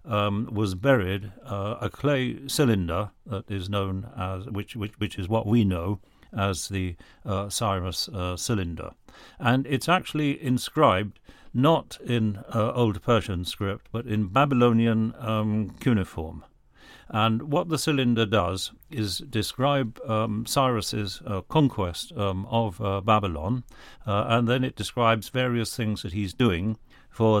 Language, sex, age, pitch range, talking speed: Persian, male, 60-79, 100-125 Hz, 140 wpm